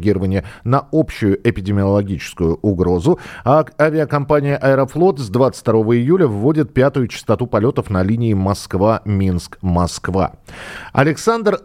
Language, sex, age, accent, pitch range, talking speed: Russian, male, 40-59, native, 100-140 Hz, 95 wpm